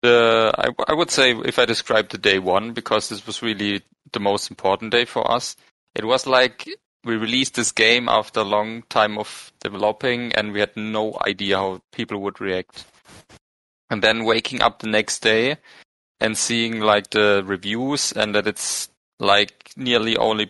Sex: male